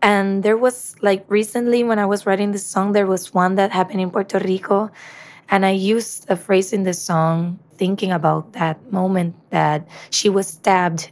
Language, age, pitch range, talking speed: English, 20-39, 170-200 Hz, 190 wpm